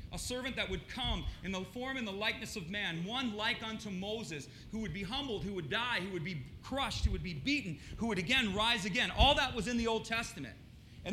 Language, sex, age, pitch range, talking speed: English, male, 40-59, 195-250 Hz, 245 wpm